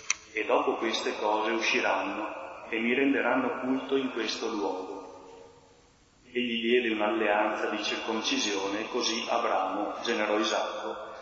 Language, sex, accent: Italian, male, native